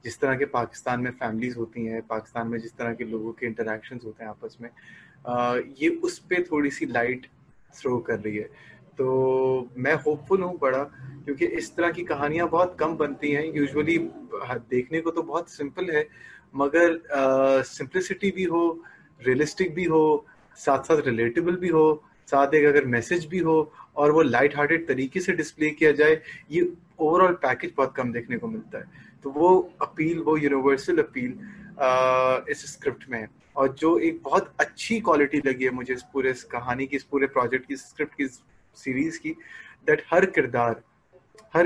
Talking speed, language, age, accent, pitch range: 125 wpm, English, 30-49, Indian, 130-170 Hz